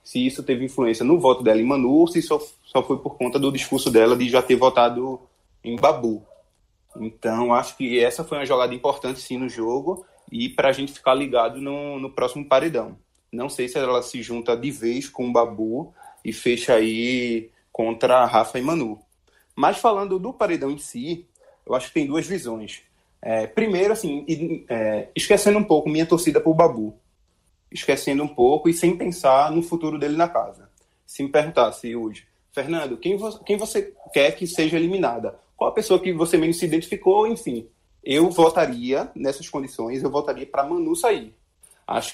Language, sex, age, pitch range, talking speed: Portuguese, male, 20-39, 125-170 Hz, 180 wpm